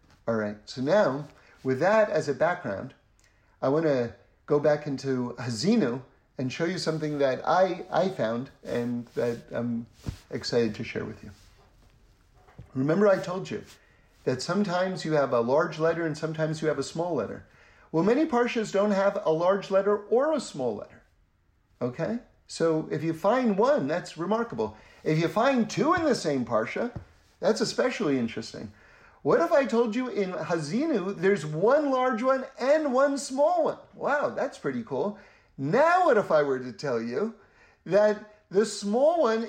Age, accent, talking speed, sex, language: 50-69, American, 170 wpm, male, English